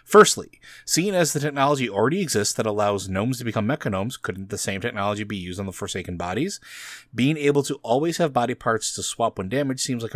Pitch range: 100-130 Hz